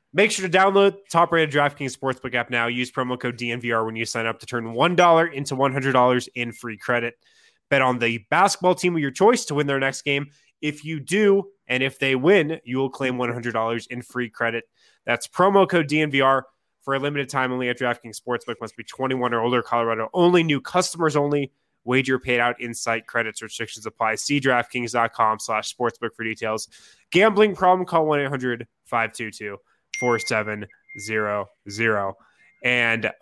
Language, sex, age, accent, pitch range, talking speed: English, male, 20-39, American, 120-165 Hz, 175 wpm